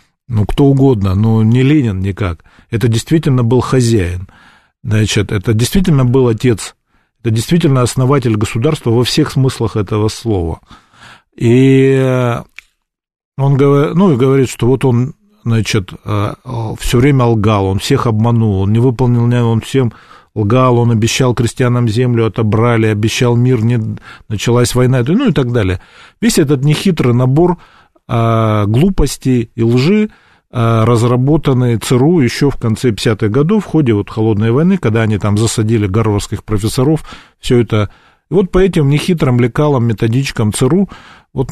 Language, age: Russian, 40-59